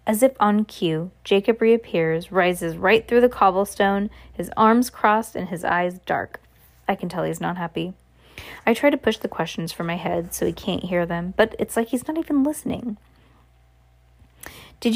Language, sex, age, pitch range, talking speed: English, female, 20-39, 175-235 Hz, 185 wpm